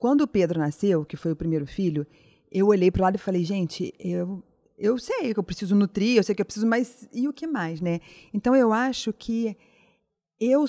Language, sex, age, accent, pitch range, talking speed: Portuguese, female, 40-59, Brazilian, 185-245 Hz, 225 wpm